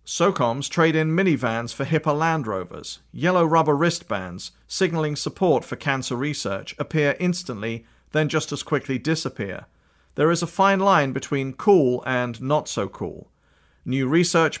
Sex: male